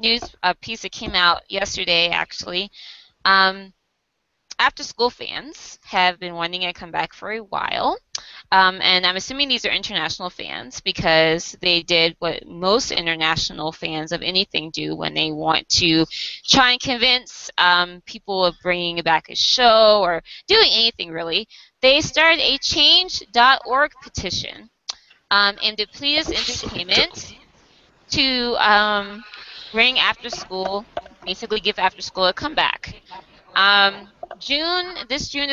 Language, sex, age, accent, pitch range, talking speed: English, female, 20-39, American, 175-220 Hz, 135 wpm